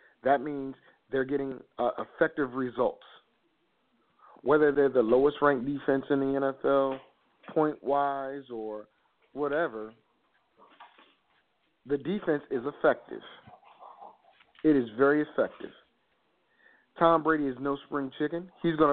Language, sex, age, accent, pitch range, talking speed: English, male, 40-59, American, 125-170 Hz, 110 wpm